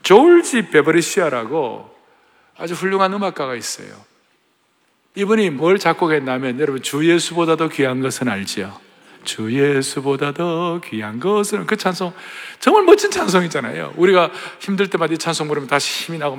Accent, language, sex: native, Korean, male